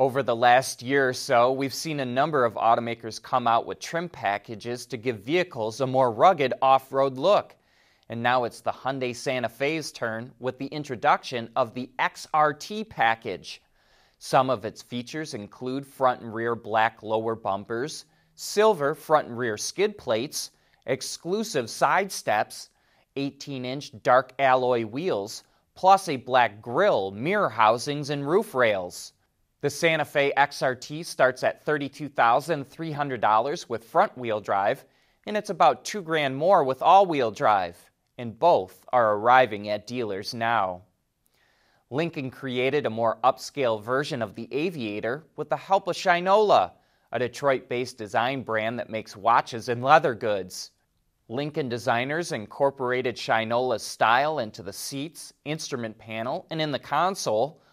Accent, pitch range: American, 115-150 Hz